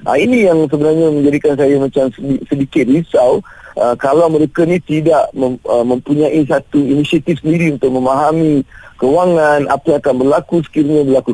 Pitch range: 130-160 Hz